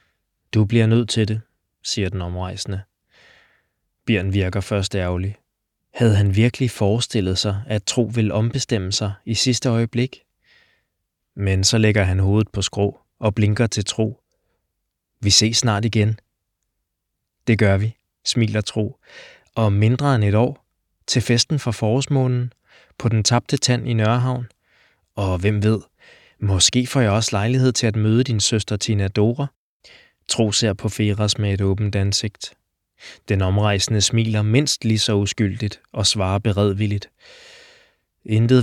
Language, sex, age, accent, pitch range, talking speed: Danish, male, 20-39, native, 105-120 Hz, 145 wpm